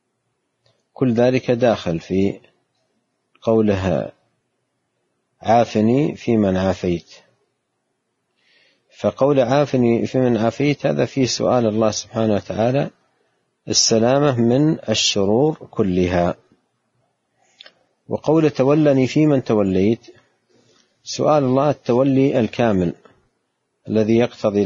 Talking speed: 85 wpm